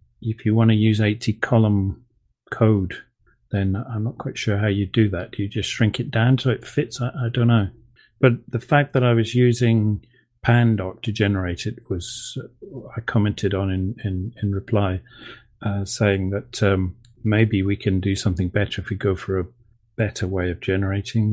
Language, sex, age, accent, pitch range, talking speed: English, male, 40-59, British, 105-120 Hz, 190 wpm